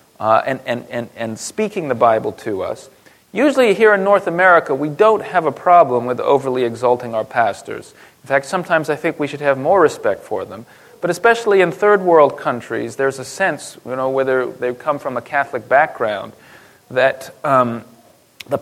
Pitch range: 130-190 Hz